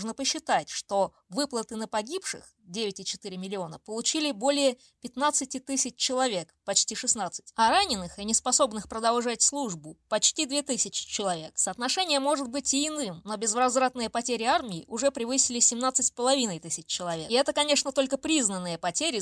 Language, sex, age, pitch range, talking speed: Russian, female, 20-39, 210-275 Hz, 140 wpm